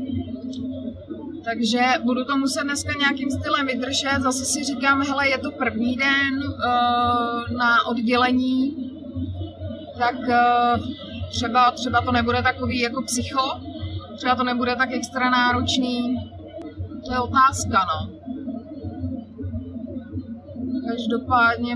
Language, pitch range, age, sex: Czech, 235-275 Hz, 30-49, female